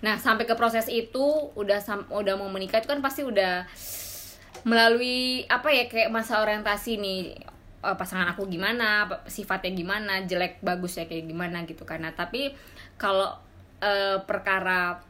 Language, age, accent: Indonesian, 20-39, native